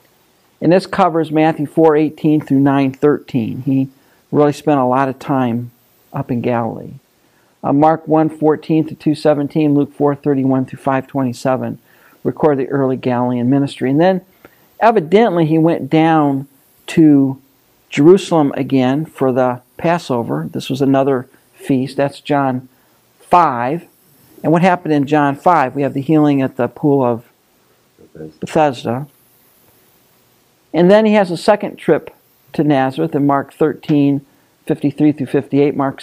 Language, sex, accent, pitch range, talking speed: English, male, American, 135-155 Hz, 135 wpm